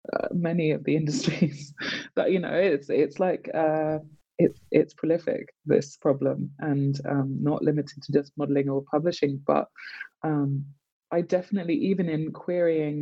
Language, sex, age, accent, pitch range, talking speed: English, female, 20-39, British, 140-160 Hz, 150 wpm